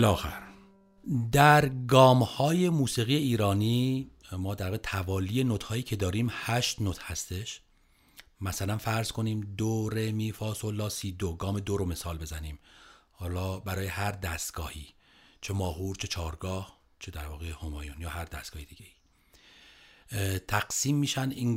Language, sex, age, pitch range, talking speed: Persian, male, 40-59, 90-115 Hz, 135 wpm